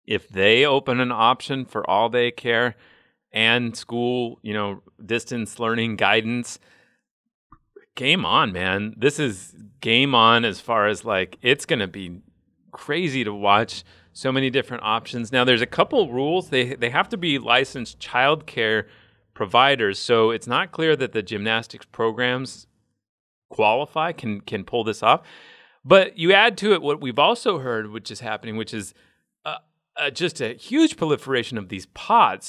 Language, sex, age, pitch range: English, male, 30-49, 110-135 Hz